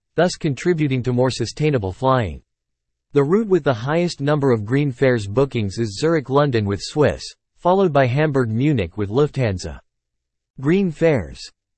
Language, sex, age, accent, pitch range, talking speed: English, male, 40-59, American, 115-150 Hz, 150 wpm